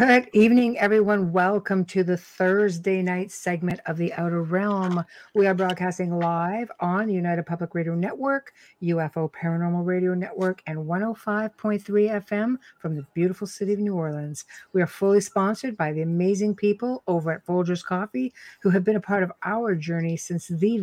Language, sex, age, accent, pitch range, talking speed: English, female, 60-79, American, 170-205 Hz, 170 wpm